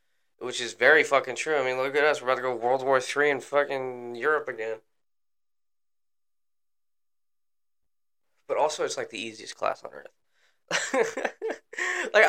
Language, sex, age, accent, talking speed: English, male, 10-29, American, 150 wpm